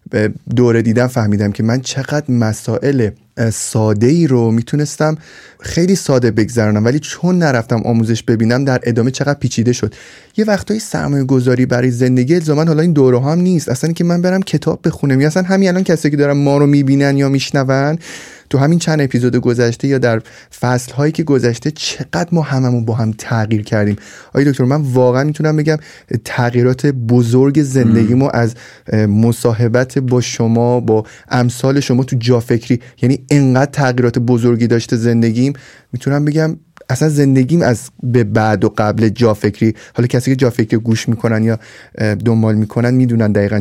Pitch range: 115-140 Hz